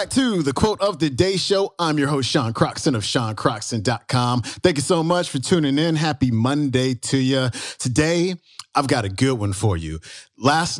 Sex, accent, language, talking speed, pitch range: male, American, English, 190 wpm, 90-130 Hz